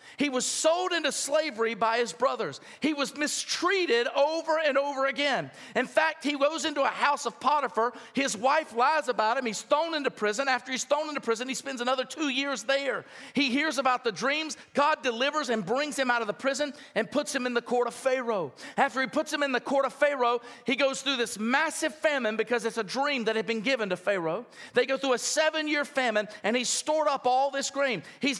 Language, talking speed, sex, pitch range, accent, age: English, 225 wpm, male, 235-295 Hz, American, 50-69